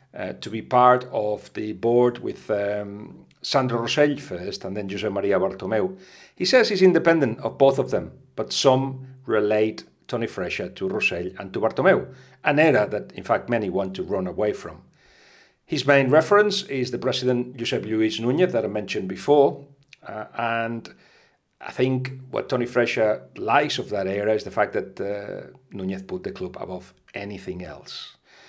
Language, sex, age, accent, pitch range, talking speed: English, male, 40-59, Spanish, 105-140 Hz, 175 wpm